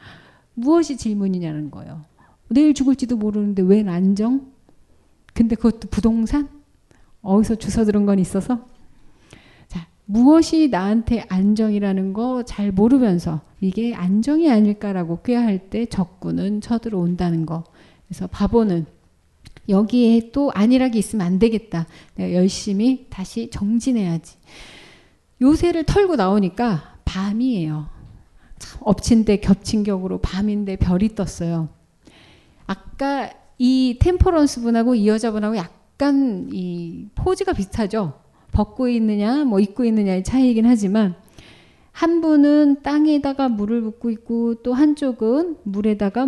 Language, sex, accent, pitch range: Korean, female, native, 190-255 Hz